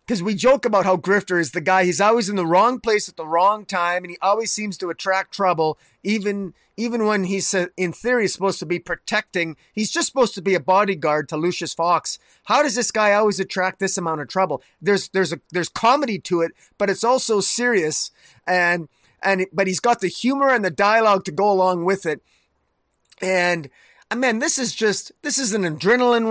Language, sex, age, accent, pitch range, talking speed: English, male, 30-49, American, 175-215 Hz, 210 wpm